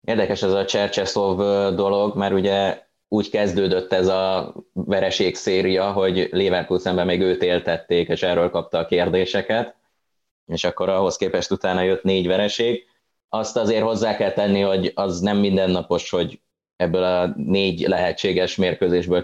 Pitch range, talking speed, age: 85-100 Hz, 145 wpm, 20-39